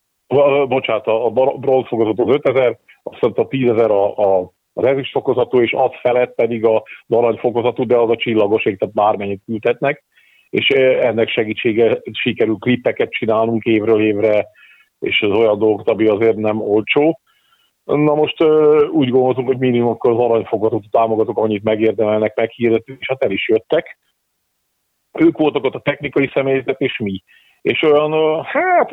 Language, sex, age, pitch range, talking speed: Hungarian, male, 40-59, 115-145 Hz, 145 wpm